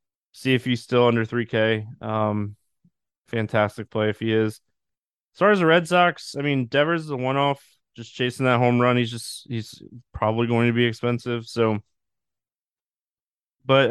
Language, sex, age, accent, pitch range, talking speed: English, male, 20-39, American, 110-140 Hz, 175 wpm